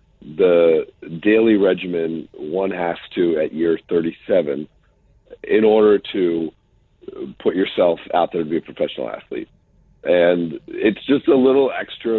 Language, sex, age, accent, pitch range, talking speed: English, male, 50-69, American, 85-110 Hz, 135 wpm